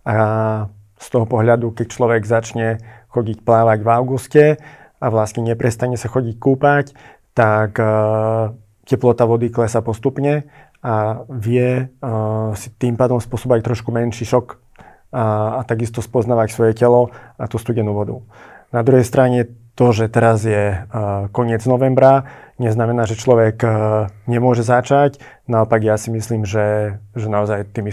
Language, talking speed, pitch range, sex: Slovak, 135 wpm, 110-125 Hz, male